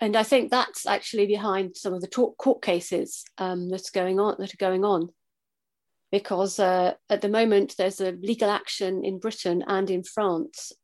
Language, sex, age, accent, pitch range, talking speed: English, female, 30-49, British, 185-215 Hz, 190 wpm